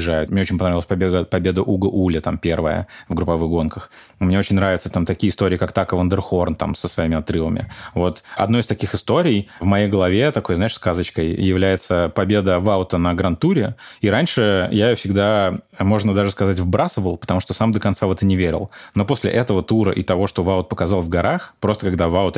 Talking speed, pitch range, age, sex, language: 195 wpm, 90-105 Hz, 20-39, male, Russian